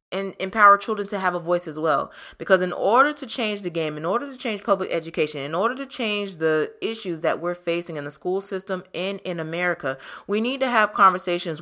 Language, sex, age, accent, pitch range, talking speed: English, female, 20-39, American, 155-195 Hz, 220 wpm